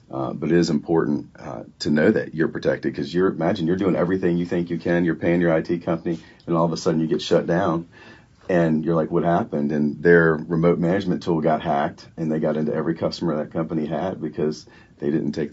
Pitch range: 75-85 Hz